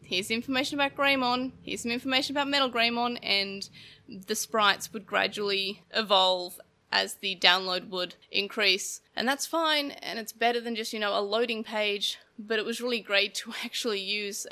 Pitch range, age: 200-245 Hz, 20-39